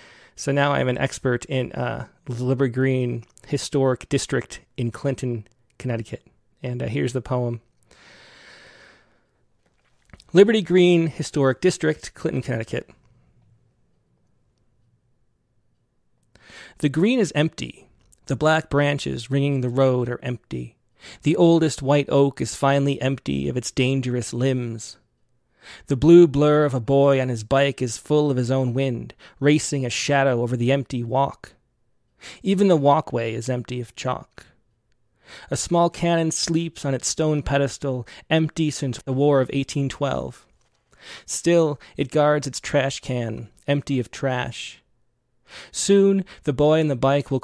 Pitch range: 125-150 Hz